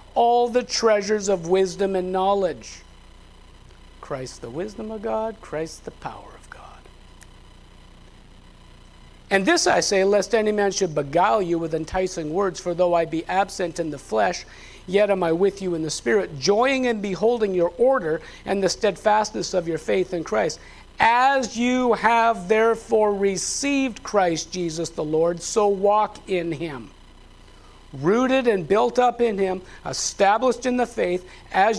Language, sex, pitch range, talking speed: English, male, 125-210 Hz, 155 wpm